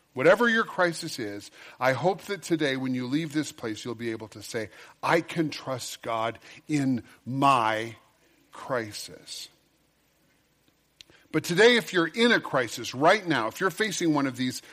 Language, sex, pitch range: English, male, 130-175 Hz